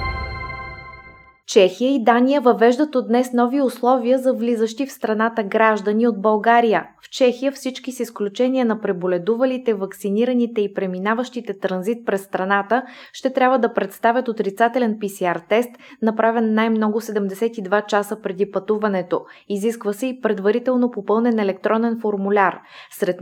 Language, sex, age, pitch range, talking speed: Bulgarian, female, 20-39, 195-245 Hz, 125 wpm